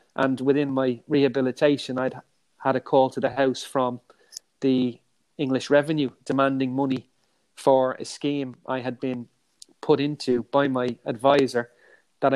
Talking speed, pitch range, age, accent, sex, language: 140 wpm, 130-140 Hz, 30-49, Irish, male, English